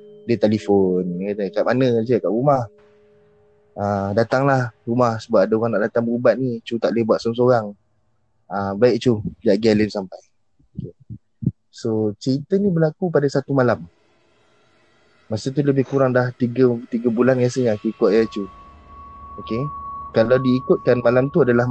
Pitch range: 105-130 Hz